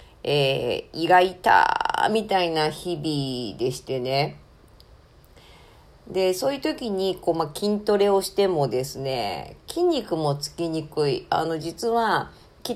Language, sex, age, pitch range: Japanese, female, 40-59, 155-235 Hz